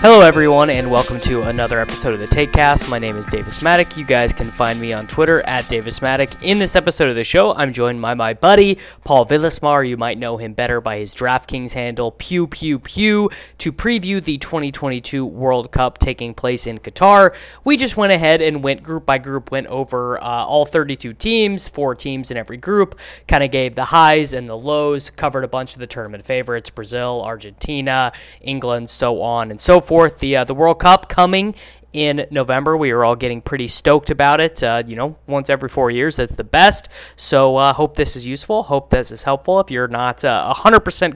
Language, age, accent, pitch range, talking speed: English, 20-39, American, 125-160 Hz, 215 wpm